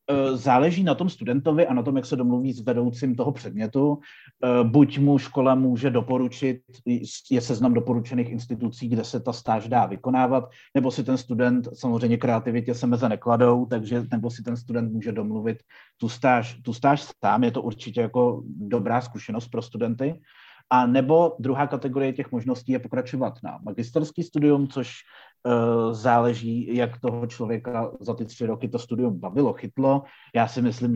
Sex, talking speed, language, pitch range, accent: male, 165 wpm, Czech, 115-130 Hz, native